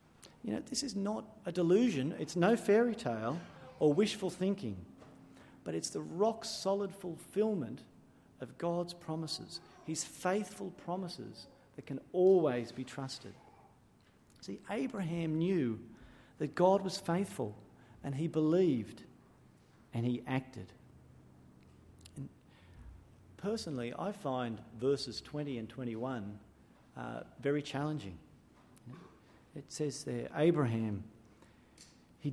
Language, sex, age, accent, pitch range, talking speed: English, male, 40-59, Australian, 120-170 Hz, 110 wpm